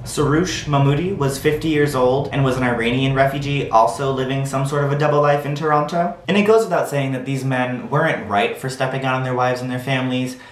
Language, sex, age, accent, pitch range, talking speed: English, male, 30-49, American, 110-135 Hz, 230 wpm